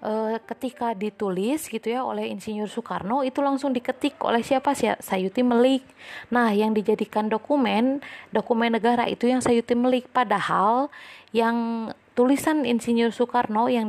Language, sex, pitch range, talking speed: Indonesian, female, 195-250 Hz, 135 wpm